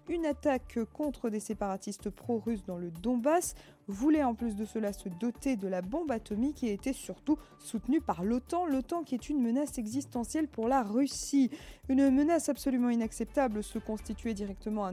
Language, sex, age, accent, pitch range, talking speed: French, female, 20-39, French, 205-270 Hz, 175 wpm